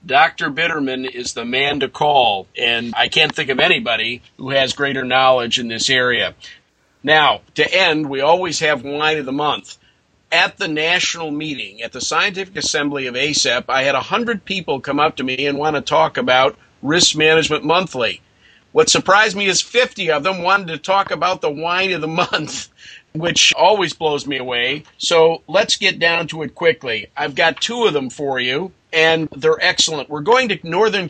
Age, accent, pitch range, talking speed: 50-69, American, 140-180 Hz, 190 wpm